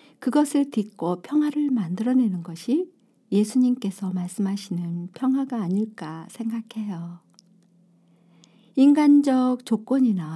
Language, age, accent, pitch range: Korean, 50-69, native, 185-260 Hz